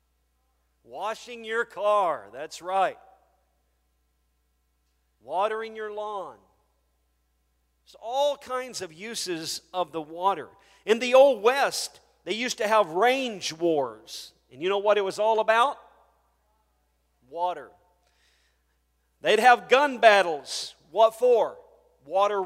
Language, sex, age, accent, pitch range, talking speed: English, male, 40-59, American, 165-250 Hz, 110 wpm